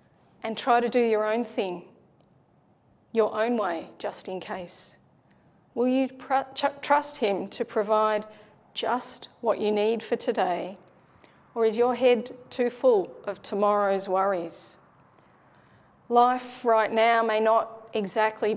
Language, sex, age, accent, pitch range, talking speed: English, female, 40-59, Australian, 195-235 Hz, 130 wpm